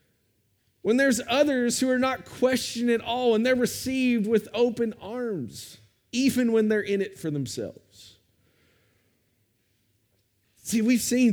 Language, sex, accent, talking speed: English, male, American, 130 wpm